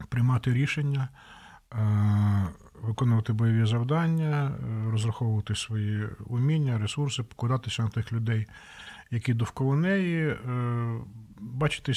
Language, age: Ukrainian, 50-69